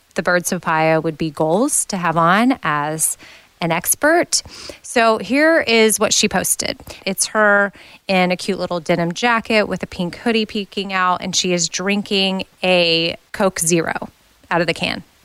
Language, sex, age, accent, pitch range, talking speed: English, female, 20-39, American, 180-215 Hz, 170 wpm